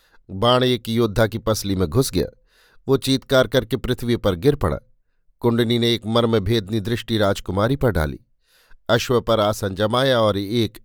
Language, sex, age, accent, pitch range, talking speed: Hindi, male, 50-69, native, 105-125 Hz, 165 wpm